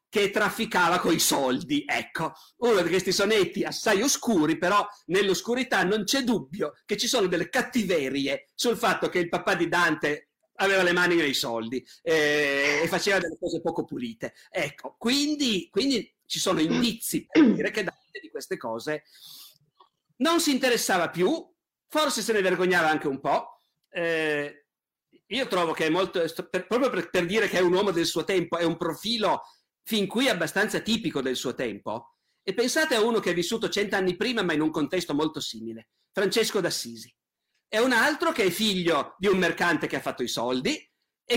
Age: 50-69